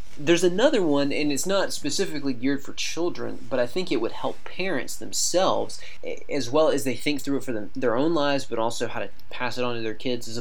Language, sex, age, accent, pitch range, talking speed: English, male, 30-49, American, 115-145 Hz, 235 wpm